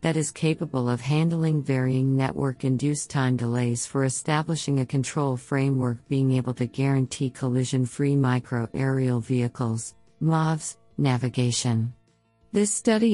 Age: 50-69